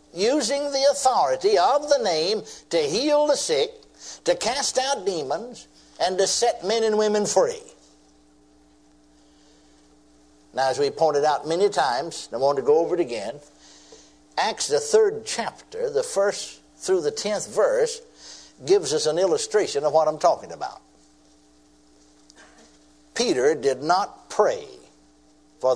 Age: 60-79